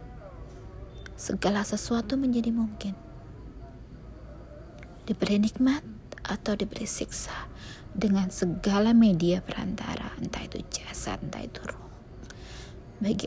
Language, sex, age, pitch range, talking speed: Indonesian, female, 20-39, 130-210 Hz, 90 wpm